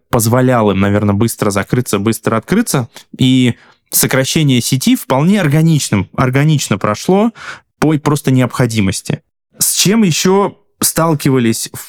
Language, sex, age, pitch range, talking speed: Russian, male, 20-39, 115-150 Hz, 100 wpm